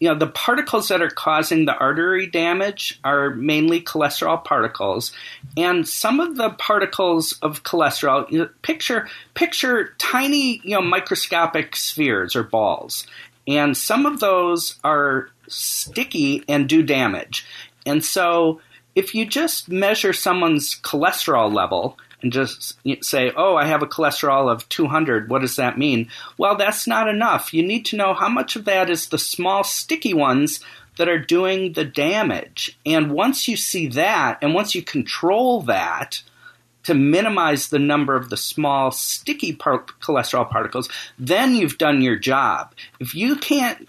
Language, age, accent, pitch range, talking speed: English, 40-59, American, 150-225 Hz, 155 wpm